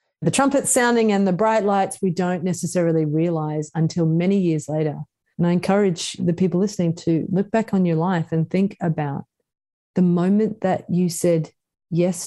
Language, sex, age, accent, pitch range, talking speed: English, female, 30-49, Australian, 155-190 Hz, 175 wpm